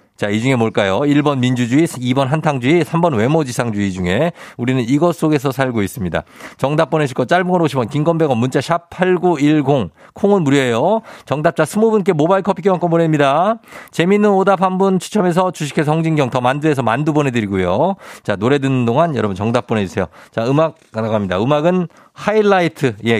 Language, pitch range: Korean, 115-170 Hz